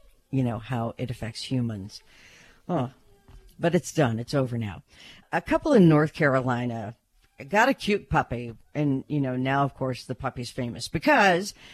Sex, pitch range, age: female, 125-170 Hz, 50-69